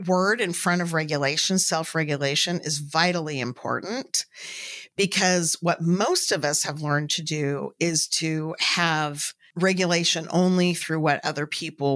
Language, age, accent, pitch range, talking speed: English, 50-69, American, 160-215 Hz, 135 wpm